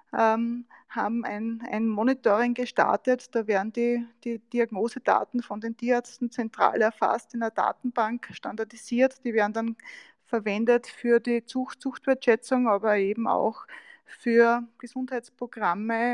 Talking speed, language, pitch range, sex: 115 wpm, German, 225-250 Hz, female